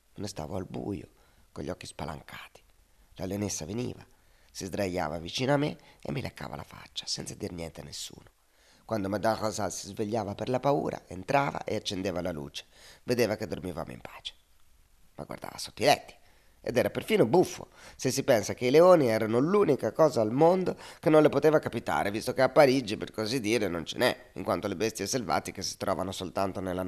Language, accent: Italian, native